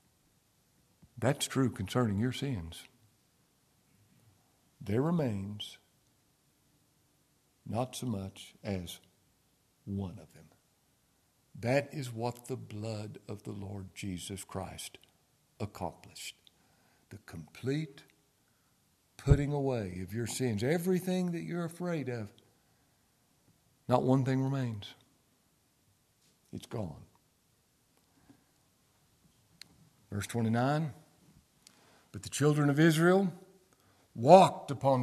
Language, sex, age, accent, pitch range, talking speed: English, male, 60-79, American, 115-160 Hz, 90 wpm